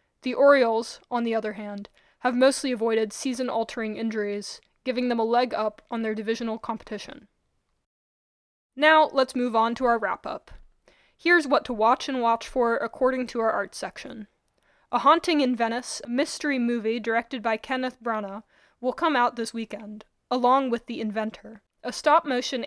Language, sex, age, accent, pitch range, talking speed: English, female, 20-39, American, 225-265 Hz, 160 wpm